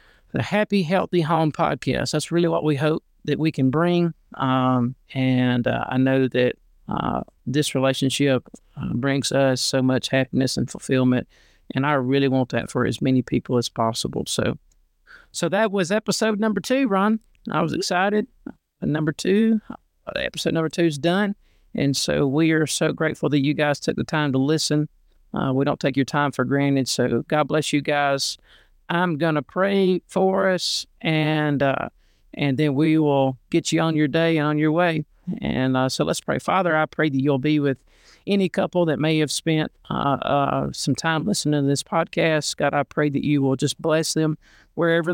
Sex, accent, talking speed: male, American, 190 wpm